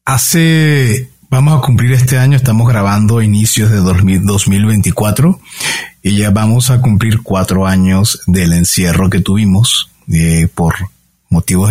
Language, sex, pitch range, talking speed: Spanish, male, 100-130 Hz, 130 wpm